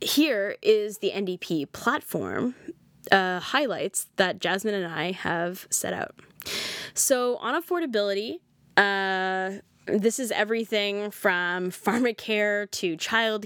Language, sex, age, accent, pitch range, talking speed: English, female, 10-29, American, 180-210 Hz, 115 wpm